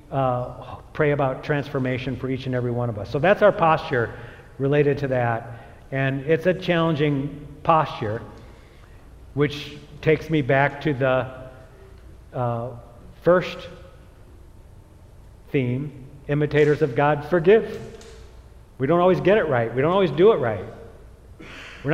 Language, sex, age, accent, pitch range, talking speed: English, male, 50-69, American, 120-160 Hz, 135 wpm